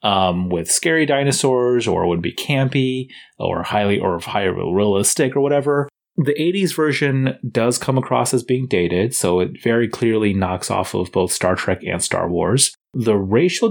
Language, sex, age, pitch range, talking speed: English, male, 30-49, 100-130 Hz, 165 wpm